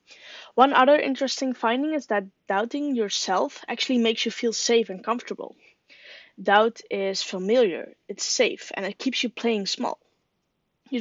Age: 20-39